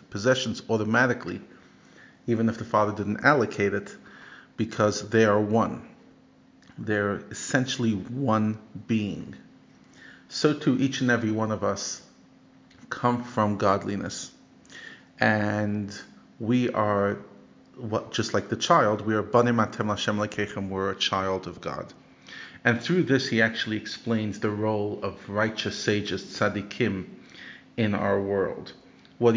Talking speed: 125 wpm